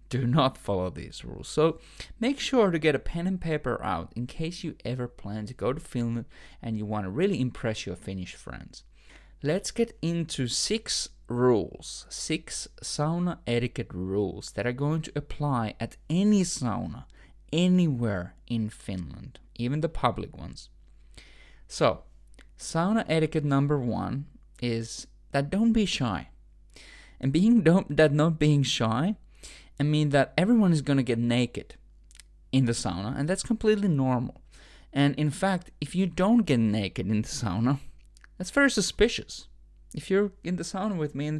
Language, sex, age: English, male, 20-39